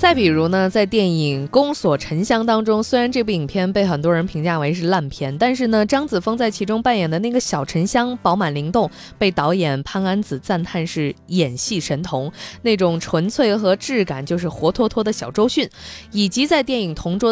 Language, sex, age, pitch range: Chinese, female, 20-39, 160-225 Hz